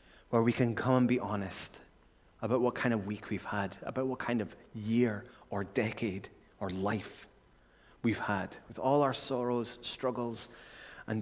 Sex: male